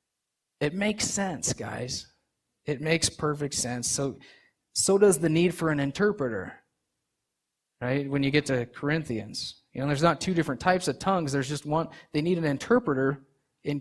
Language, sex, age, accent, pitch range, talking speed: English, male, 30-49, American, 140-180 Hz, 170 wpm